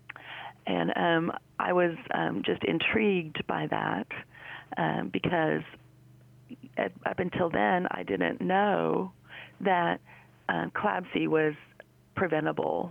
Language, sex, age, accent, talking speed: English, female, 40-59, American, 100 wpm